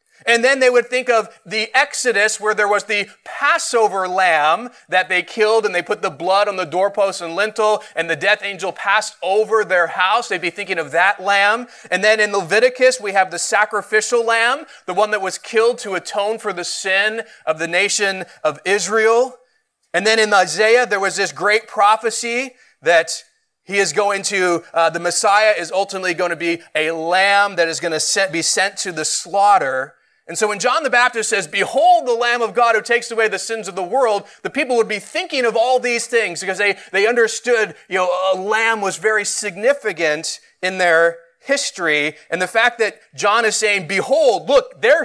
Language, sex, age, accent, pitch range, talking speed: English, male, 30-49, American, 185-230 Hz, 200 wpm